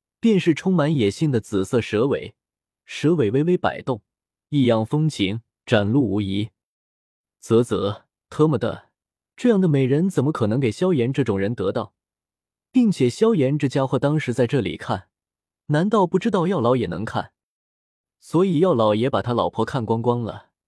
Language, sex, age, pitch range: Chinese, male, 20-39, 110-160 Hz